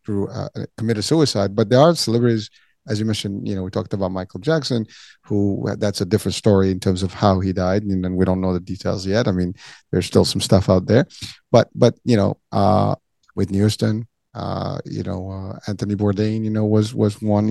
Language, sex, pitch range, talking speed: English, male, 100-115 Hz, 215 wpm